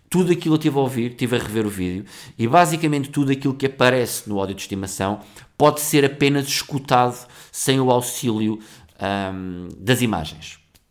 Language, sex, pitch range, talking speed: Portuguese, male, 95-125 Hz, 170 wpm